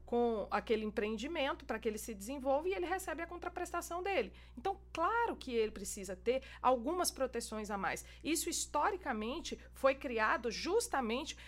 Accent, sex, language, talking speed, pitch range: Brazilian, female, Portuguese, 150 wpm, 225-295 Hz